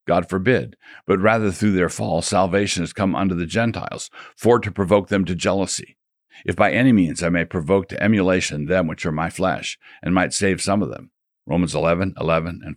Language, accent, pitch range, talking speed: English, American, 85-105 Hz, 200 wpm